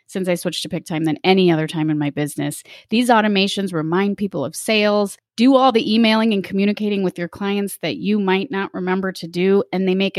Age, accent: 30-49, American